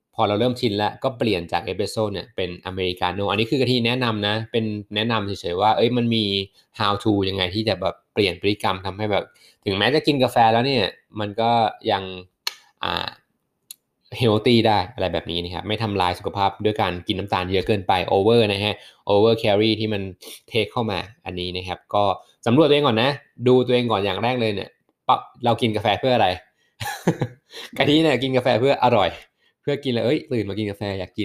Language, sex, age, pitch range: Thai, male, 20-39, 100-120 Hz